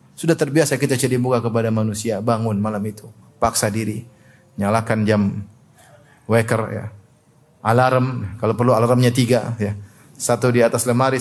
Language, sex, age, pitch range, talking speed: Indonesian, male, 30-49, 115-145 Hz, 140 wpm